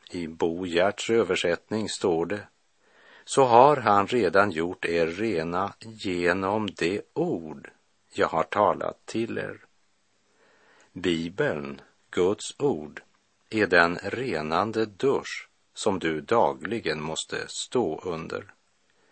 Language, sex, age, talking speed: Swedish, male, 60-79, 105 wpm